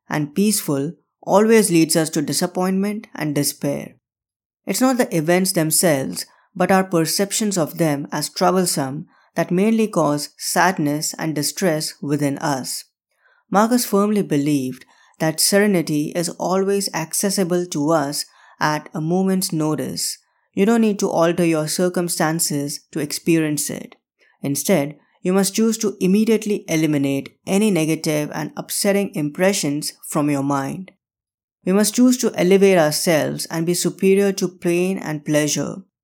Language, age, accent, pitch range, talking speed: English, 20-39, Indian, 150-195 Hz, 135 wpm